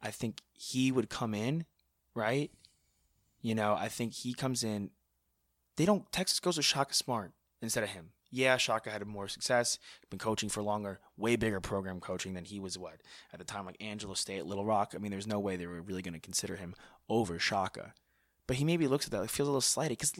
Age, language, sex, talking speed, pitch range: 20-39, English, male, 220 wpm, 95-125 Hz